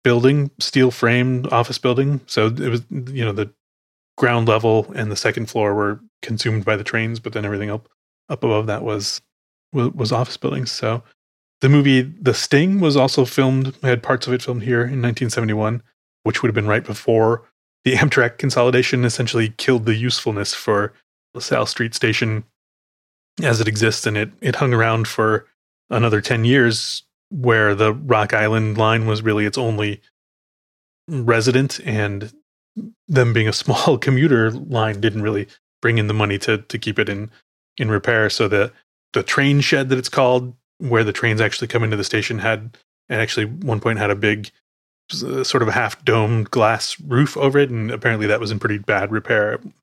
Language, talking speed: English, 180 wpm